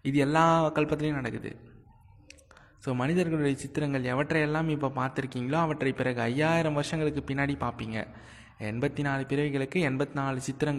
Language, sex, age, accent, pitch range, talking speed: Tamil, male, 20-39, native, 120-165 Hz, 105 wpm